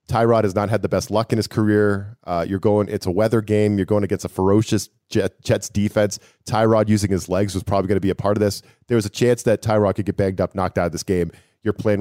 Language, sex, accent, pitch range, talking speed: English, male, American, 95-110 Hz, 270 wpm